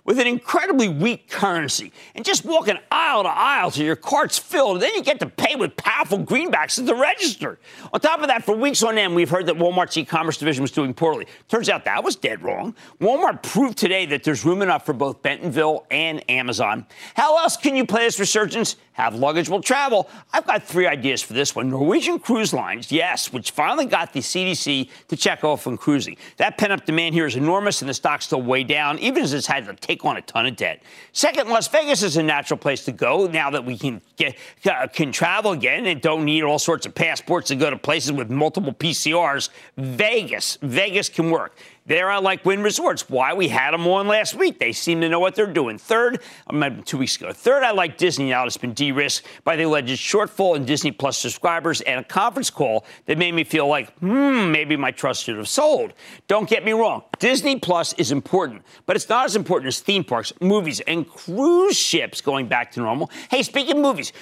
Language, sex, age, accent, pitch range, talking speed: English, male, 50-69, American, 145-215 Hz, 220 wpm